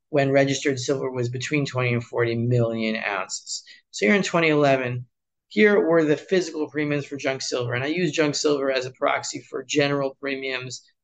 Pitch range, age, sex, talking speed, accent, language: 120-150 Hz, 30-49, male, 180 wpm, American, English